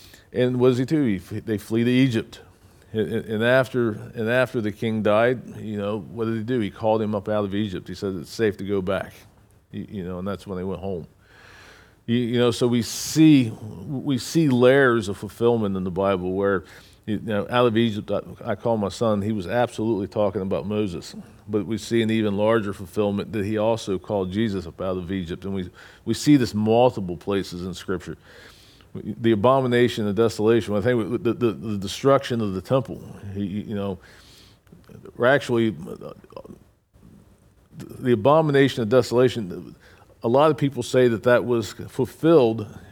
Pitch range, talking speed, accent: 100-125 Hz, 185 wpm, American